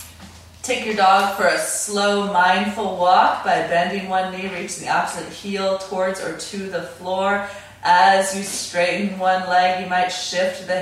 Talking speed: 165 wpm